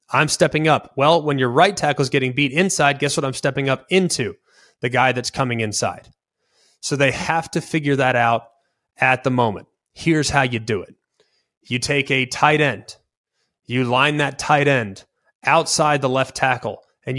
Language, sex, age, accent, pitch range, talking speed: English, male, 20-39, American, 125-150 Hz, 185 wpm